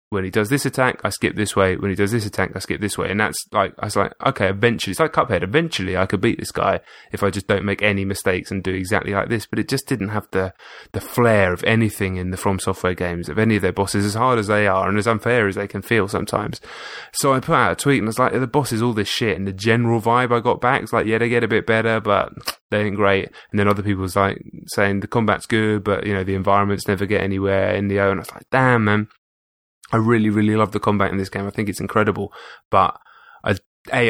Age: 20-39